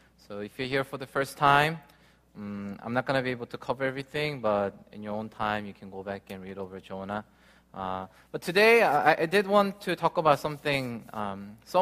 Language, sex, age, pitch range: Korean, male, 20-39, 100-140 Hz